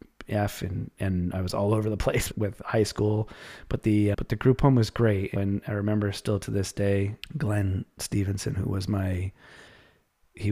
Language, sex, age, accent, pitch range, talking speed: English, male, 30-49, American, 95-105 Hz, 190 wpm